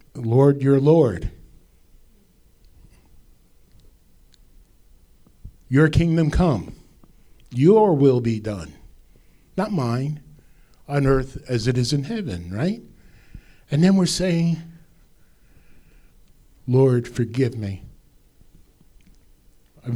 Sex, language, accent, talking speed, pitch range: male, English, American, 85 wpm, 95-140 Hz